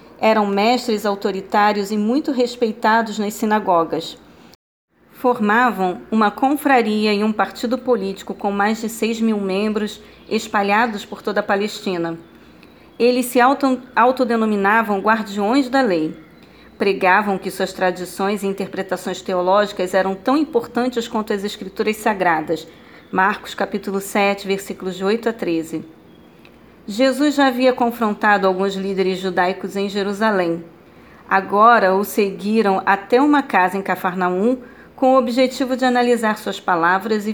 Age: 40-59